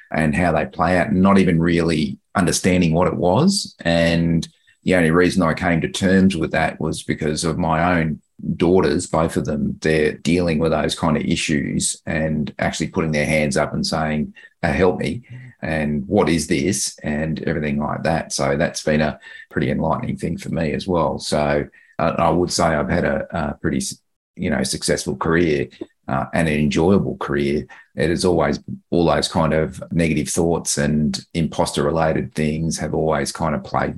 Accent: Australian